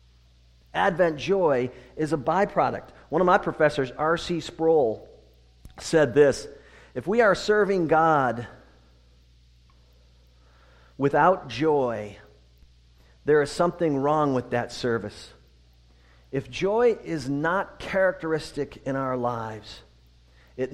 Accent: American